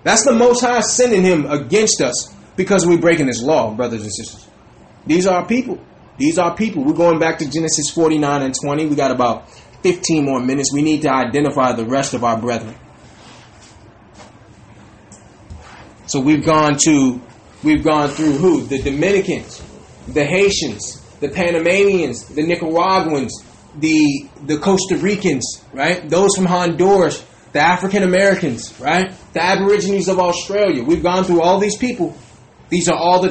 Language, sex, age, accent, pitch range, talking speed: English, male, 20-39, American, 135-190 Hz, 160 wpm